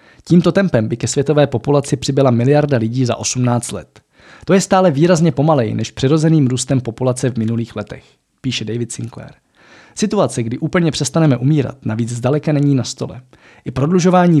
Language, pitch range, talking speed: Czech, 120-150 Hz, 160 wpm